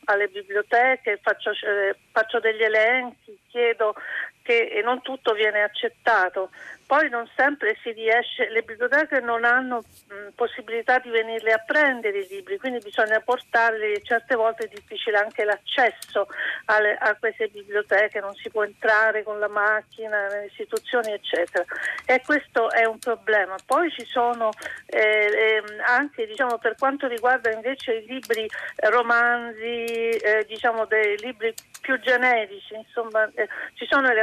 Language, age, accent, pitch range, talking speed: Italian, 50-69, native, 215-255 Hz, 145 wpm